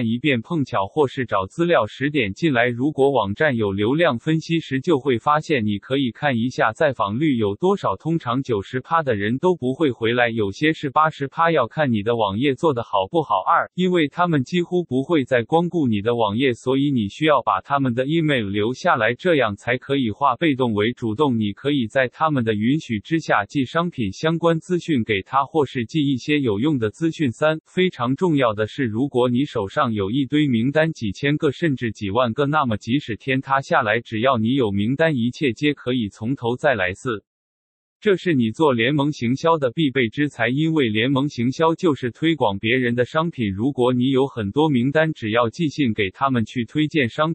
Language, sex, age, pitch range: Chinese, male, 20-39, 115-155 Hz